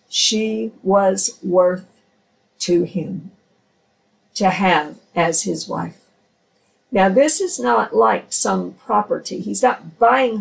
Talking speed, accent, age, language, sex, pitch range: 115 wpm, American, 50-69, English, female, 180-245 Hz